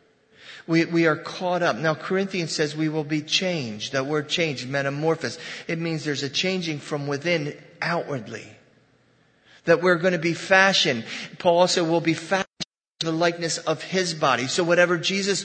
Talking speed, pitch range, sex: 170 wpm, 130-165 Hz, male